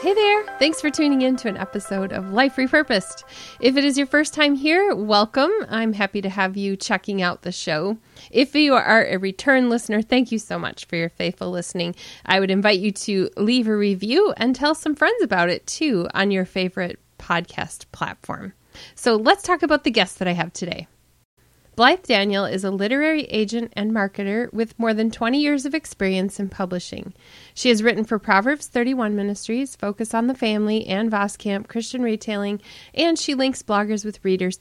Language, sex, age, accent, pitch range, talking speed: English, female, 30-49, American, 190-255 Hz, 190 wpm